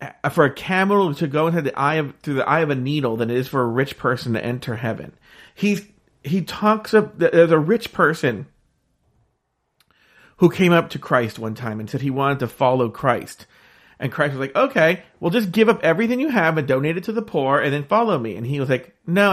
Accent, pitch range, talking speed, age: American, 145-210 Hz, 215 wpm, 40-59